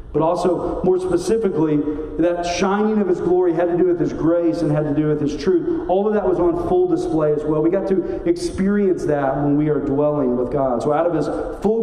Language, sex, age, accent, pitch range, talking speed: English, male, 40-59, American, 130-185 Hz, 240 wpm